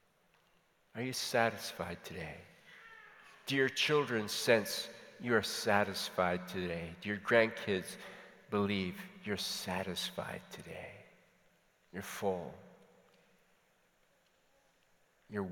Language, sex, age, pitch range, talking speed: English, male, 50-69, 115-190 Hz, 80 wpm